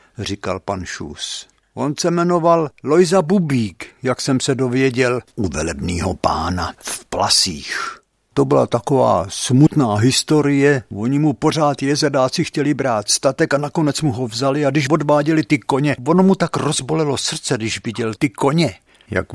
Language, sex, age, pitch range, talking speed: Czech, male, 60-79, 110-145 Hz, 150 wpm